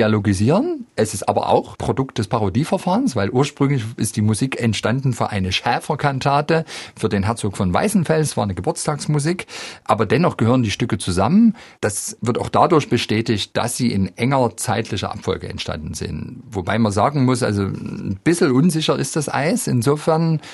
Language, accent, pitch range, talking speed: German, German, 105-135 Hz, 165 wpm